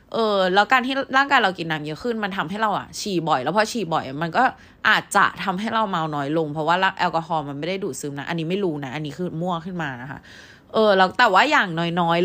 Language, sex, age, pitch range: Thai, female, 20-39, 160-210 Hz